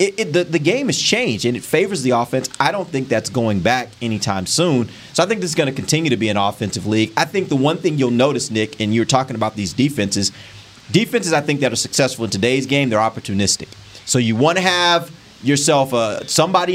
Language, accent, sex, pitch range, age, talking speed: English, American, male, 115-150 Hz, 30-49, 235 wpm